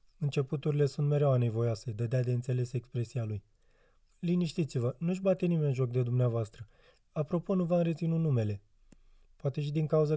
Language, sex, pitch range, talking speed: Romanian, male, 120-155 Hz, 155 wpm